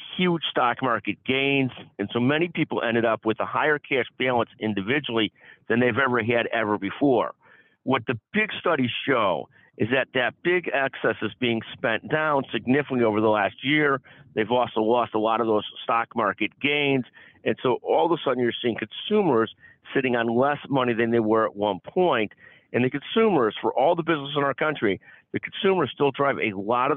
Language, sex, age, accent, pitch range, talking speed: English, male, 50-69, American, 110-140 Hz, 195 wpm